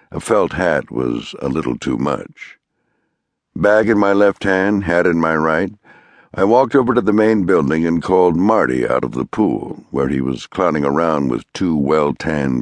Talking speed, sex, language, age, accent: 185 wpm, male, English, 60-79, American